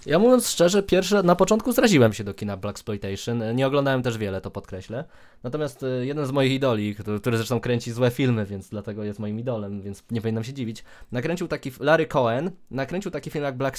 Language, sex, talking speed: Polish, male, 210 wpm